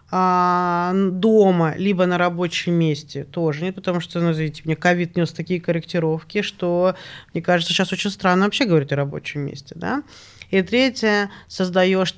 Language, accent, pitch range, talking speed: Russian, native, 160-195 Hz, 150 wpm